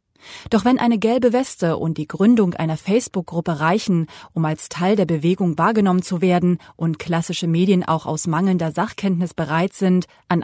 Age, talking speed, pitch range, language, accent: 30-49, 165 wpm, 170-210 Hz, German, German